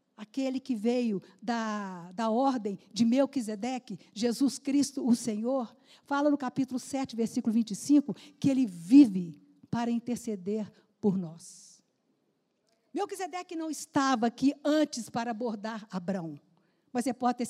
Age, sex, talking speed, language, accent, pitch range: 50-69, female, 125 wpm, Portuguese, Brazilian, 220-270 Hz